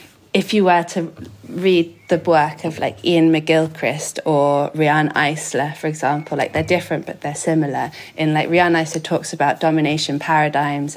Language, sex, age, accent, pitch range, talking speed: English, female, 20-39, British, 155-165 Hz, 160 wpm